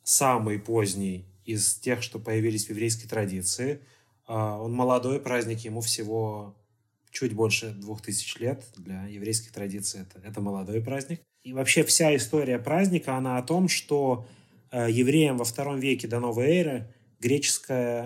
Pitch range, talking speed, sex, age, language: 115-145 Hz, 145 wpm, male, 30-49, Russian